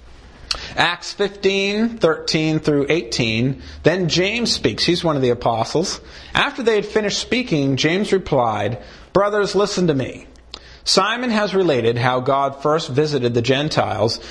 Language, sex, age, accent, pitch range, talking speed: English, male, 40-59, American, 120-170 Hz, 140 wpm